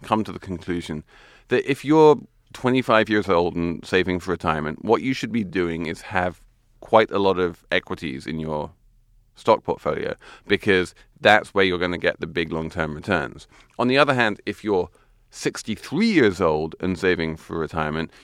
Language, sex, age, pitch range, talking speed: English, male, 30-49, 90-115 Hz, 180 wpm